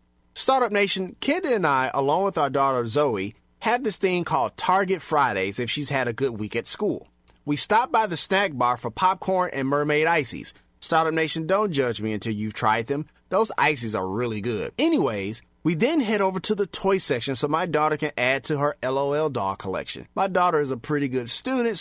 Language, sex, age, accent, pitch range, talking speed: English, male, 30-49, American, 130-190 Hz, 205 wpm